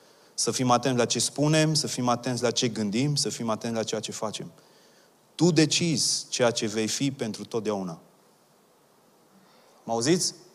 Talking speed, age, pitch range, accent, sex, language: 165 wpm, 30-49, 125-165 Hz, native, male, Romanian